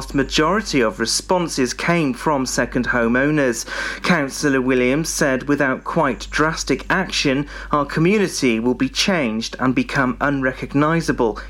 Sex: male